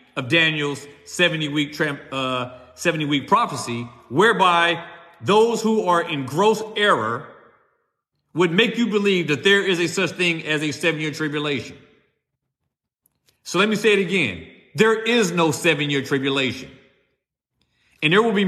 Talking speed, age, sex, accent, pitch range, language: 140 wpm, 40-59, male, American, 150-225 Hz, English